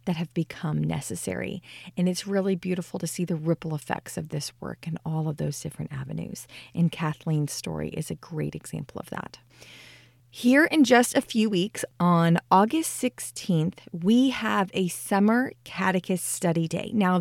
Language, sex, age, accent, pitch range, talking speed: English, female, 30-49, American, 170-215 Hz, 165 wpm